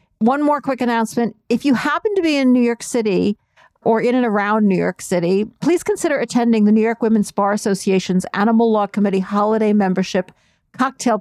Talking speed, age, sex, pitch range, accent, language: 185 wpm, 50-69, female, 195-250 Hz, American, English